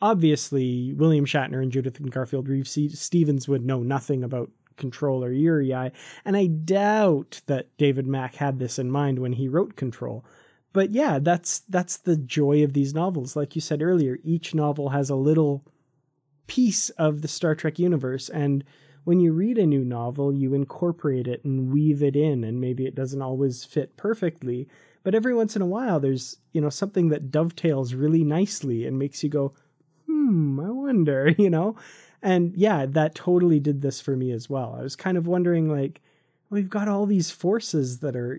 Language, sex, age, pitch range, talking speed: English, male, 20-39, 130-170 Hz, 185 wpm